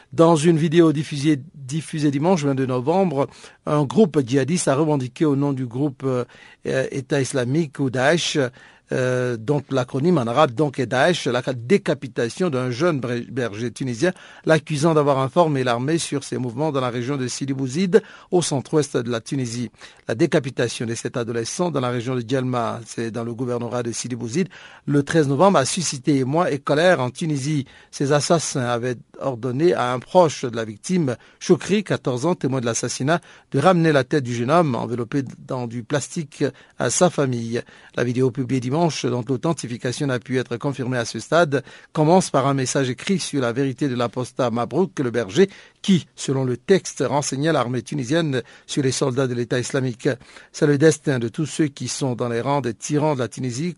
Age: 60-79